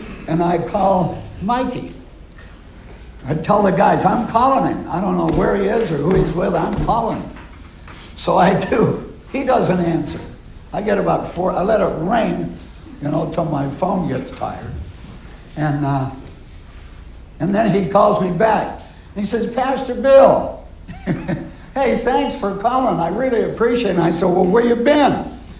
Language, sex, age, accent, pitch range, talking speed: English, male, 60-79, American, 140-230 Hz, 170 wpm